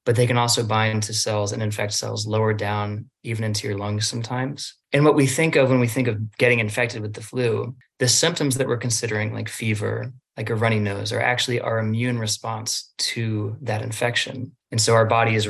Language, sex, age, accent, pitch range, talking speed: English, male, 20-39, American, 110-125 Hz, 215 wpm